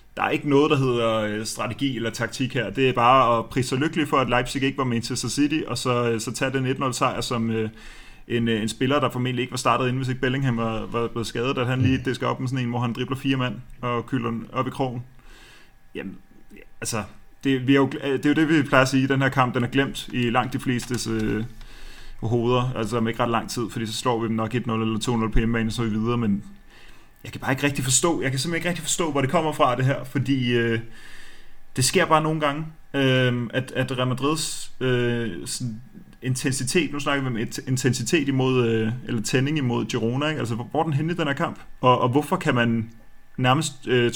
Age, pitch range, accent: 30-49, 115-140 Hz, native